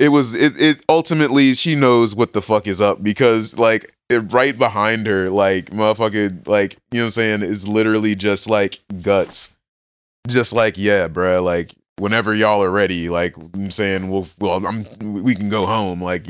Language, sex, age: English, male, 20-39